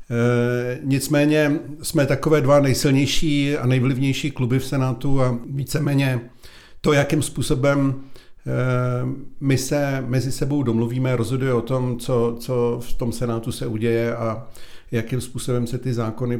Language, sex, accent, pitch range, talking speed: Czech, male, native, 115-130 Hz, 130 wpm